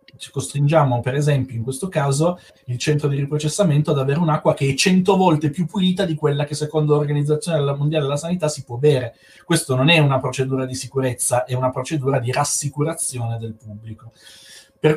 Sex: male